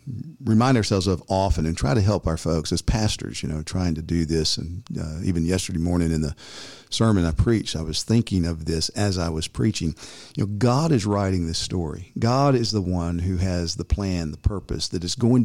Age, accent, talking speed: 50-69, American, 220 wpm